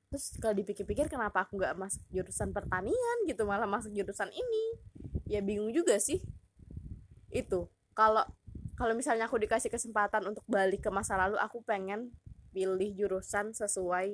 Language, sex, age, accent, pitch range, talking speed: Indonesian, female, 20-39, native, 190-235 Hz, 150 wpm